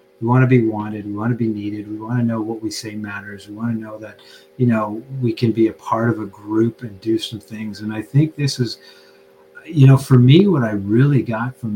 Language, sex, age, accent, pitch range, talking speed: English, male, 40-59, American, 100-125 Hz, 260 wpm